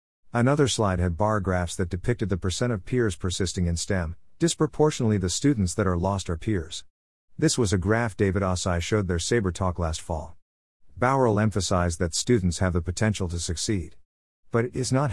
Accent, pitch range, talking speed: American, 90-110 Hz, 185 wpm